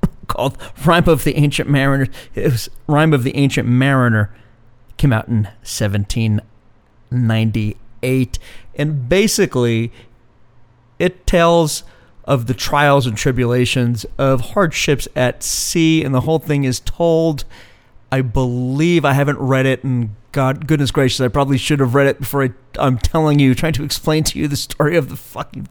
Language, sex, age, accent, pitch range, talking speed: English, male, 40-59, American, 120-150 Hz, 160 wpm